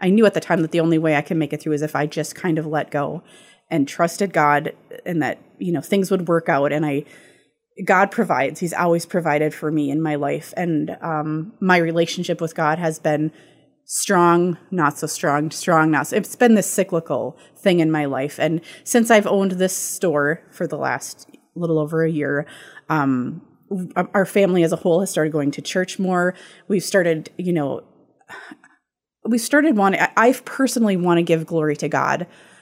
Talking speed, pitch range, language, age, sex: 200 wpm, 155-190 Hz, English, 30-49, female